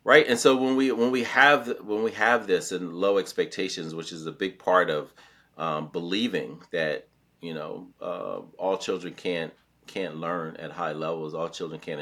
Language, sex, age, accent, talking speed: English, male, 40-59, American, 190 wpm